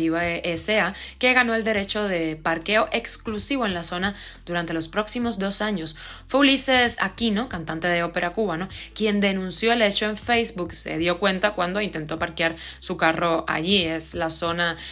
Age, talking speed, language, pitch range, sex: 20-39, 160 wpm, Spanish, 170-215 Hz, female